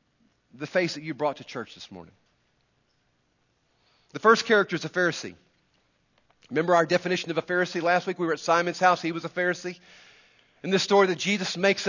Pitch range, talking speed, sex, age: 150-205 Hz, 190 wpm, male, 40-59